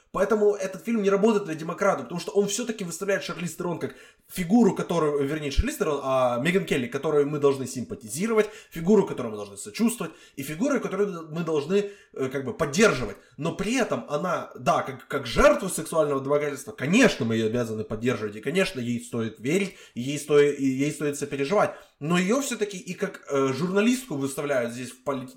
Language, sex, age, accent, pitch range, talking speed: Ukrainian, male, 20-39, native, 140-205 Hz, 185 wpm